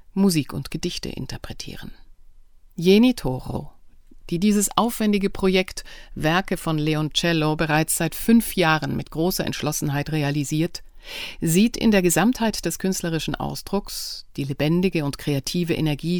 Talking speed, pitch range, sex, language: 120 wpm, 145-190 Hz, female, German